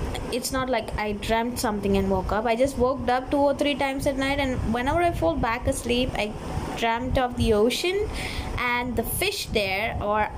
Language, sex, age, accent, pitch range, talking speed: English, female, 20-39, Indian, 225-295 Hz, 200 wpm